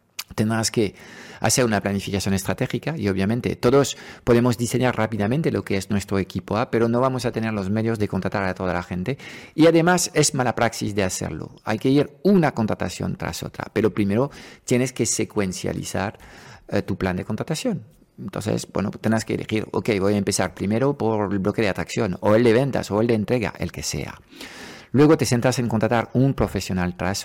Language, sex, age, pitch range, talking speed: Spanish, male, 50-69, 100-120 Hz, 195 wpm